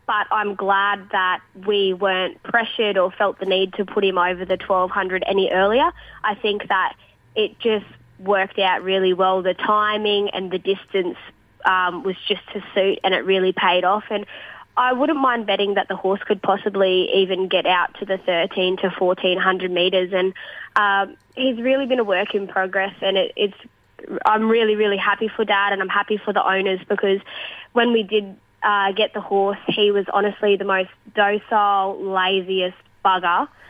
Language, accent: English, Australian